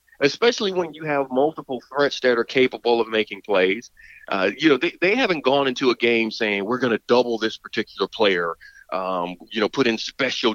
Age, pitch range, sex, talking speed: 40-59, 115-170 Hz, male, 205 wpm